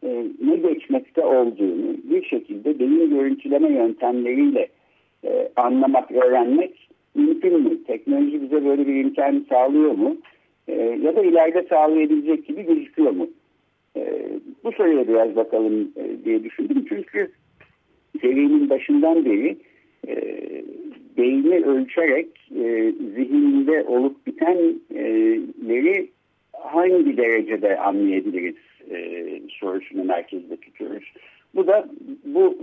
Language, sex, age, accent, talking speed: Turkish, male, 60-79, native, 95 wpm